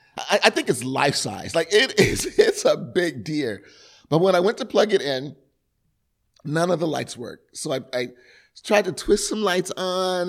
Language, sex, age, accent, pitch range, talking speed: English, male, 30-49, American, 145-195 Hz, 190 wpm